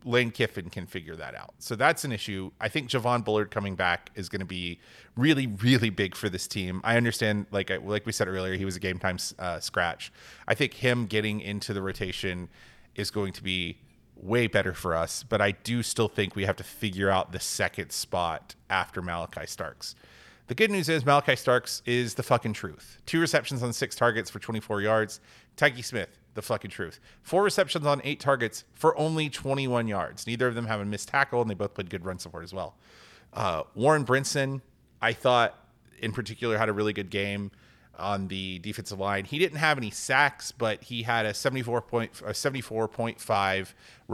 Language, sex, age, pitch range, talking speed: English, male, 30-49, 95-120 Hz, 200 wpm